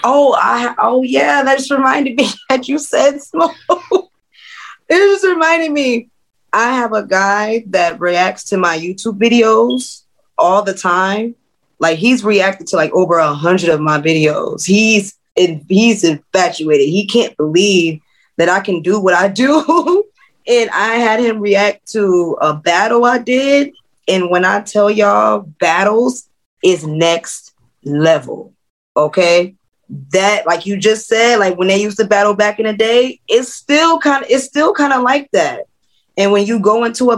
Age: 20-39